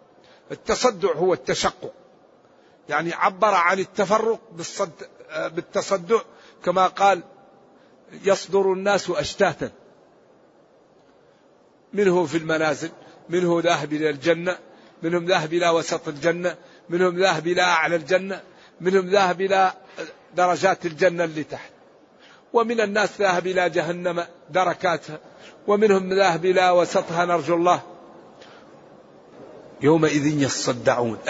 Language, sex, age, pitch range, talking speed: Arabic, male, 60-79, 165-200 Hz, 100 wpm